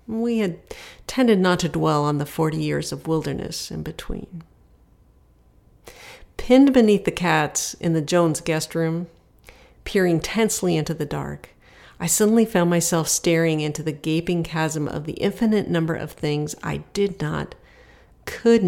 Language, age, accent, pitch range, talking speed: English, 50-69, American, 155-190 Hz, 150 wpm